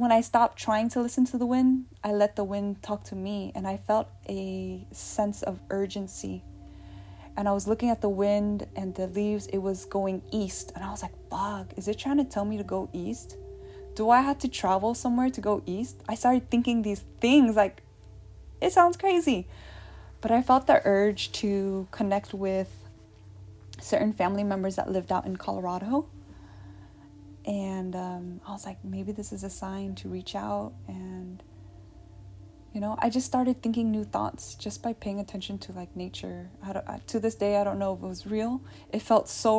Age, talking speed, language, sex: 10-29, 190 wpm, English, female